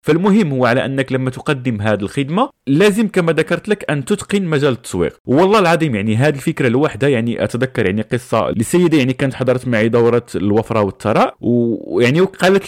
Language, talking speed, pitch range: Arabic, 170 wpm, 110-150 Hz